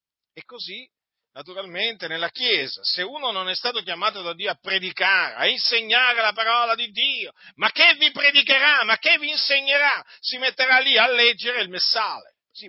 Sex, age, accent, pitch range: male, 50-69, native, 170-240 Hz